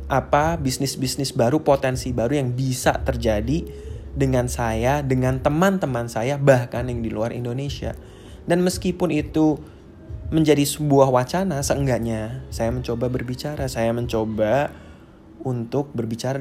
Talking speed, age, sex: 125 wpm, 20-39, male